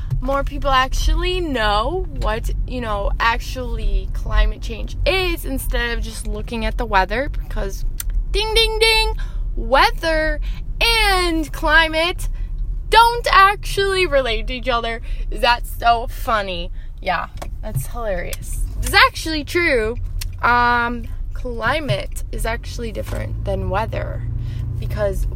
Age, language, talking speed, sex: 20-39, English, 115 wpm, female